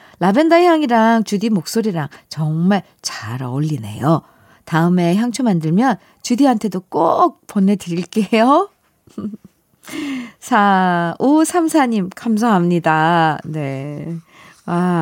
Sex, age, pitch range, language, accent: female, 50-69, 165-260 Hz, Korean, native